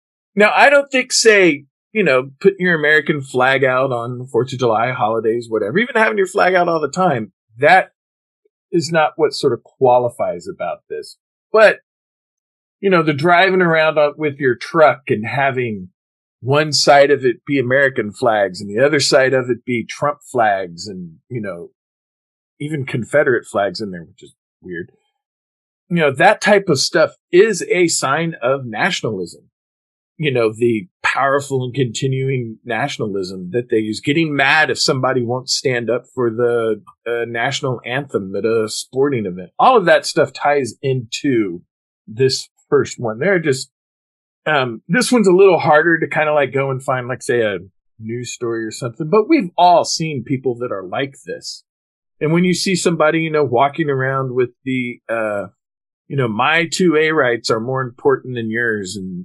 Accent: American